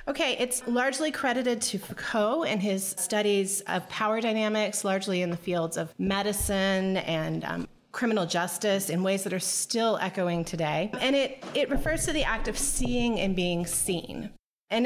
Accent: American